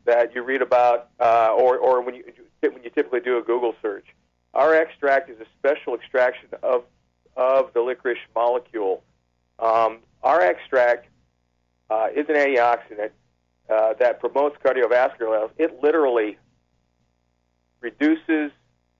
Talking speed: 135 wpm